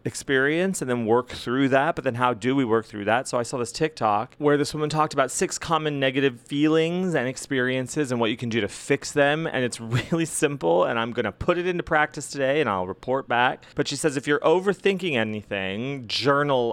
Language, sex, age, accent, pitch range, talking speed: English, male, 30-49, American, 115-150 Hz, 220 wpm